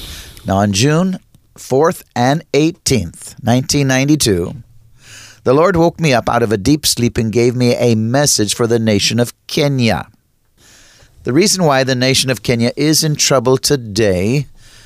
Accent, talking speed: American, 155 wpm